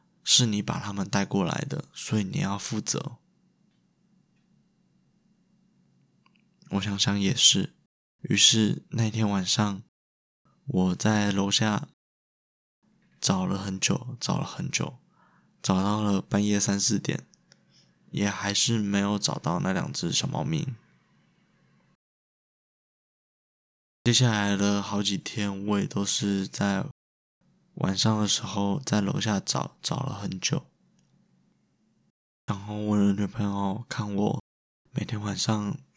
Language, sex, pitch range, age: Chinese, male, 100-110 Hz, 20-39